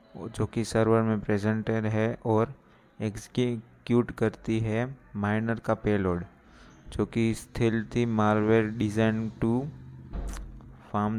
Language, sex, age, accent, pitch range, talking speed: Hindi, male, 20-39, native, 105-115 Hz, 105 wpm